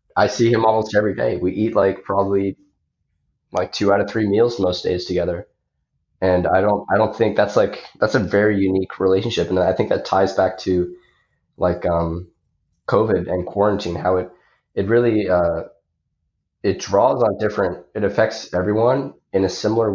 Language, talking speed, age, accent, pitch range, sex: English, 175 wpm, 20-39, American, 90-100 Hz, male